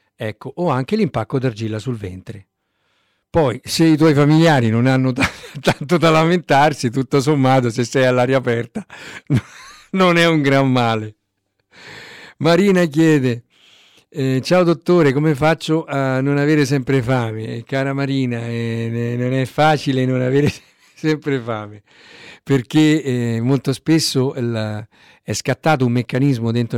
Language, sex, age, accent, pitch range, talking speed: Italian, male, 50-69, native, 115-150 Hz, 135 wpm